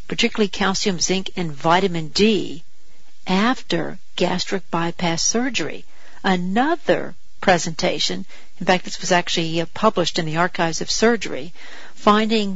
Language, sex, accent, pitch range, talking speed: English, female, American, 175-210 Hz, 115 wpm